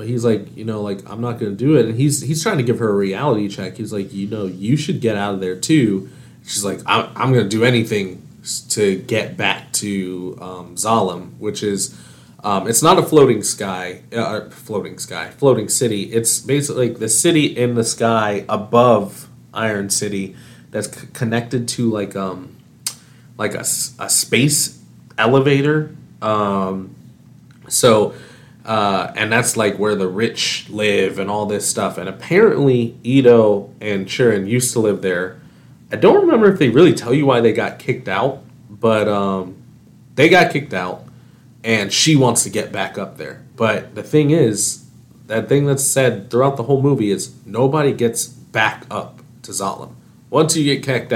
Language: English